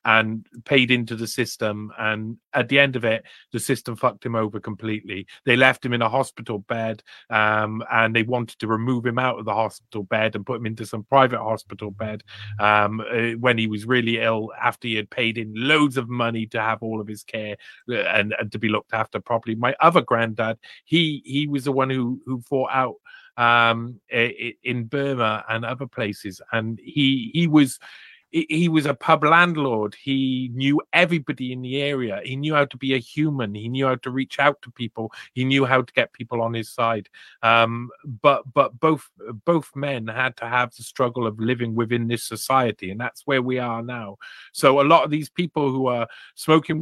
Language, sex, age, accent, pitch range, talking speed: English, male, 40-59, British, 115-140 Hz, 205 wpm